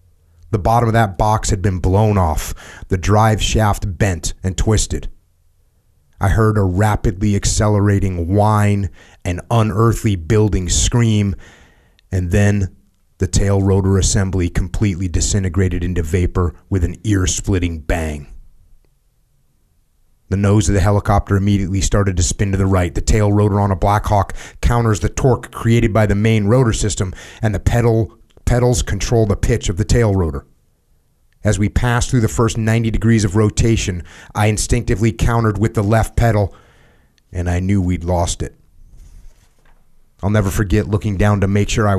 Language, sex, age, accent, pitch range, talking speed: English, male, 30-49, American, 90-110 Hz, 155 wpm